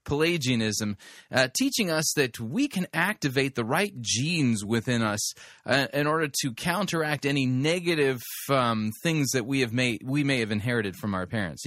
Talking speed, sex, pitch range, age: 170 wpm, male, 110-145 Hz, 30-49